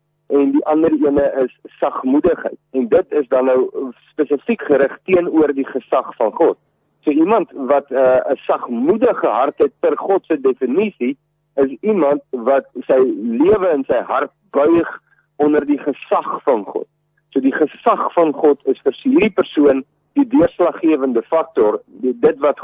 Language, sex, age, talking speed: English, male, 50-69, 150 wpm